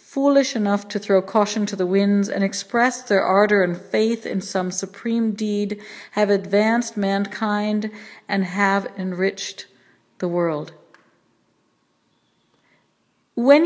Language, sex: English, female